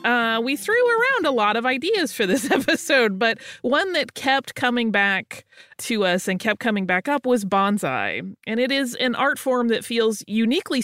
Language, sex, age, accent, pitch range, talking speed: English, female, 30-49, American, 165-230 Hz, 195 wpm